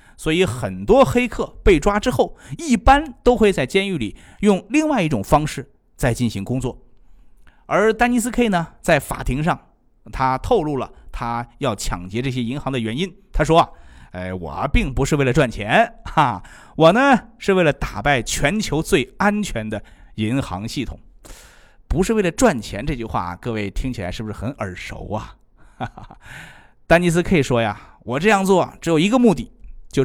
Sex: male